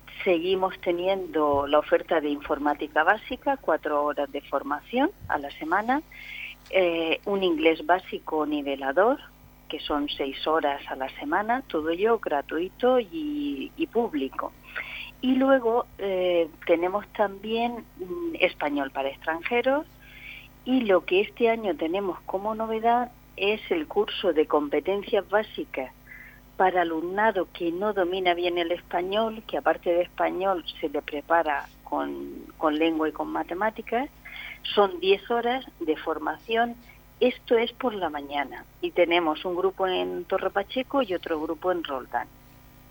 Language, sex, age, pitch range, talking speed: Spanish, female, 40-59, 150-220 Hz, 135 wpm